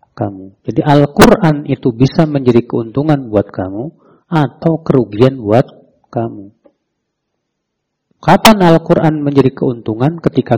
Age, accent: 40-59, native